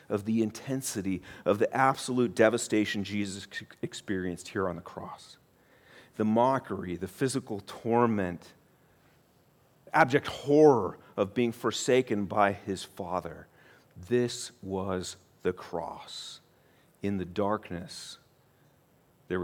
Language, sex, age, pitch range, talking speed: English, male, 40-59, 105-150 Hz, 105 wpm